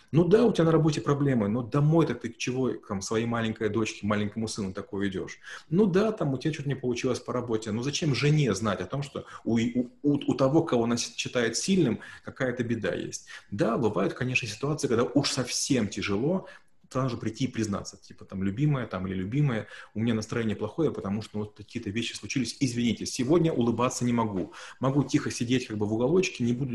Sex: male